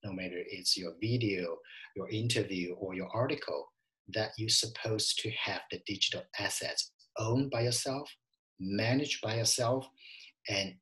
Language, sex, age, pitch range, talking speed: English, male, 50-69, 100-130 Hz, 140 wpm